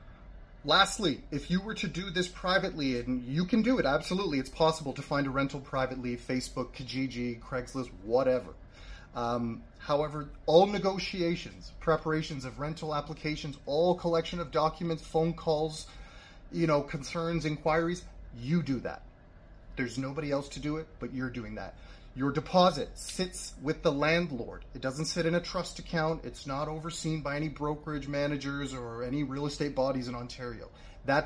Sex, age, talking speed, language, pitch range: male, 30-49, 160 wpm, English, 125-160 Hz